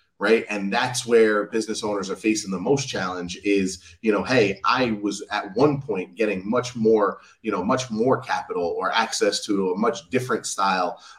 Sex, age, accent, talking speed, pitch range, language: male, 30-49, American, 190 wpm, 100-125 Hz, English